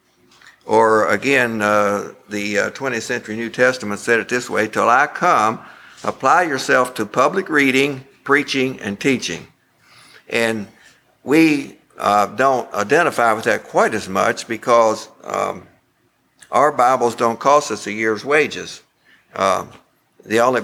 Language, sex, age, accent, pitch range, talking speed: English, male, 60-79, American, 105-125 Hz, 135 wpm